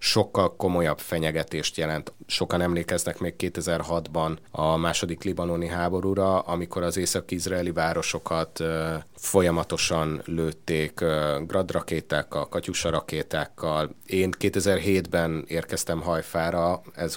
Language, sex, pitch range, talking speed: Hungarian, male, 80-90 Hz, 95 wpm